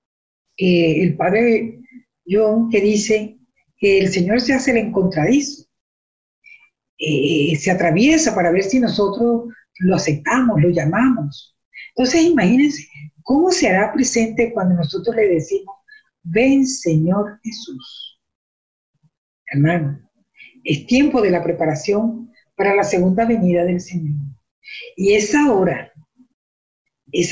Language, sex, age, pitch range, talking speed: Spanish, female, 50-69, 175-260 Hz, 115 wpm